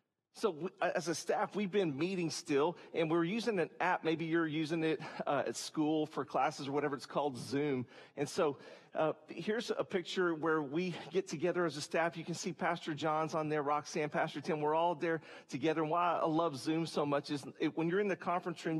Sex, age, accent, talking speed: male, 40-59, American, 220 wpm